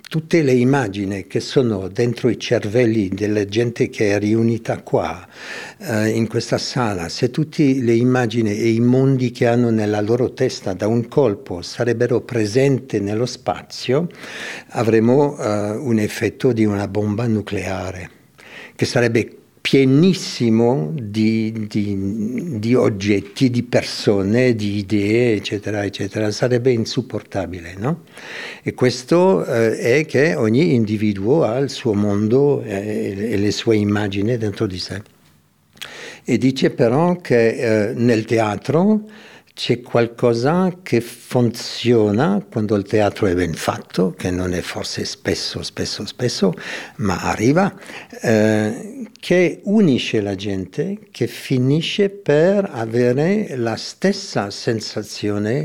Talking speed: 125 wpm